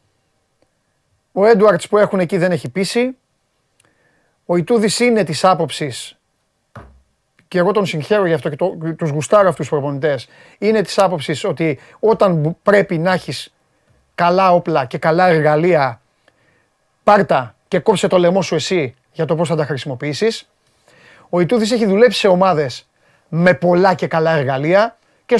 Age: 30-49